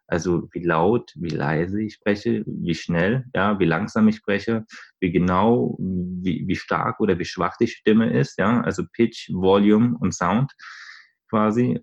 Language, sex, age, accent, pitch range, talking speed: German, male, 20-39, German, 90-110 Hz, 160 wpm